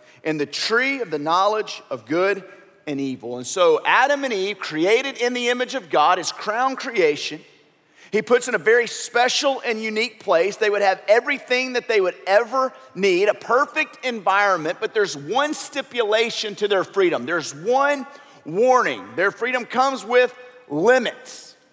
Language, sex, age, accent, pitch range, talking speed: English, male, 40-59, American, 185-280 Hz, 165 wpm